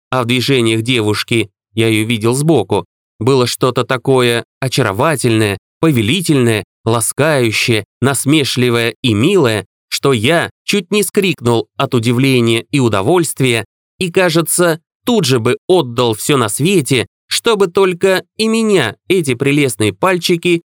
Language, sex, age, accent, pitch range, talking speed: Russian, male, 20-39, native, 110-165 Hz, 120 wpm